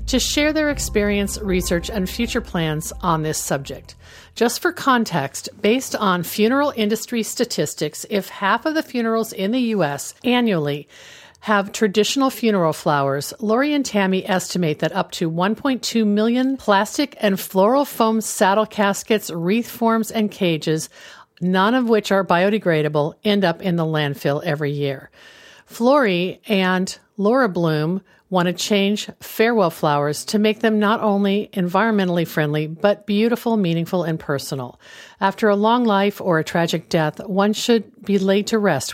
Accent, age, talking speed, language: American, 50-69, 150 wpm, English